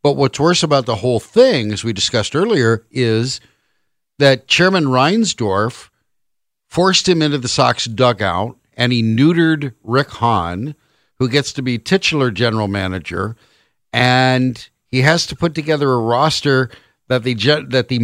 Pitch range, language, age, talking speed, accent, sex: 110-150 Hz, English, 60-79, 155 wpm, American, male